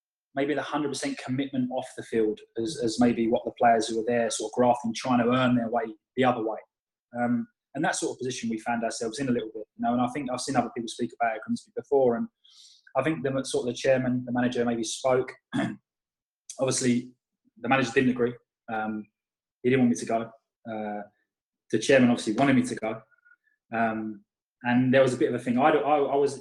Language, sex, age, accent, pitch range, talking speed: English, male, 20-39, British, 120-140 Hz, 225 wpm